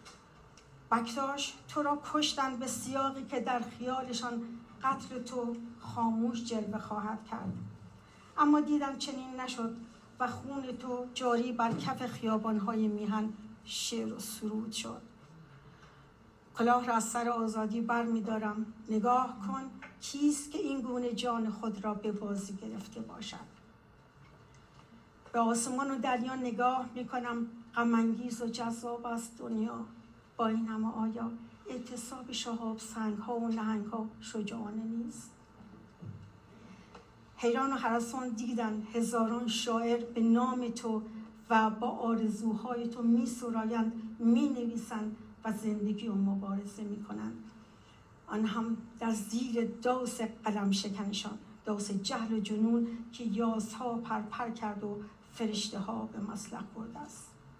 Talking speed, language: 120 wpm, Persian